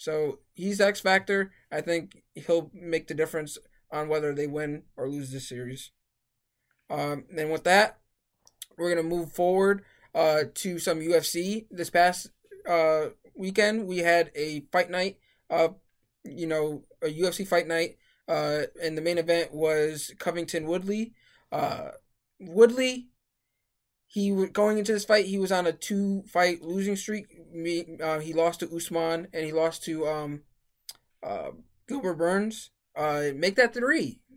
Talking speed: 155 wpm